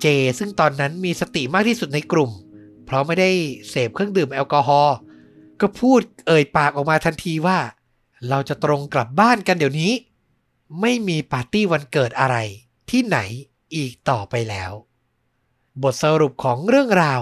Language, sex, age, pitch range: Thai, male, 60-79, 135-195 Hz